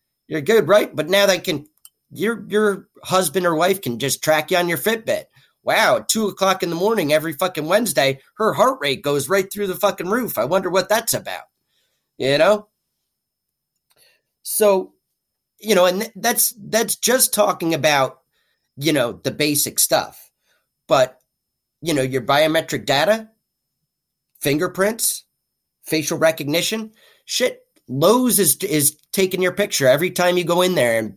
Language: English